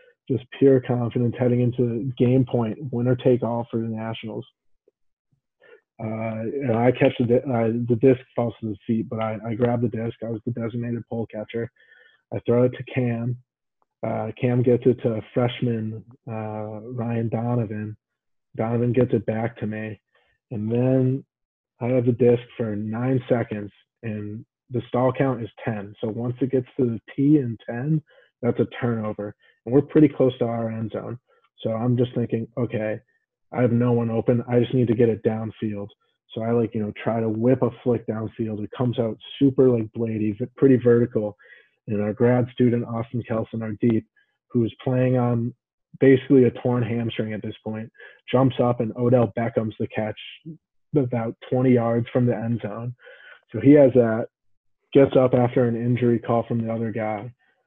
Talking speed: 185 wpm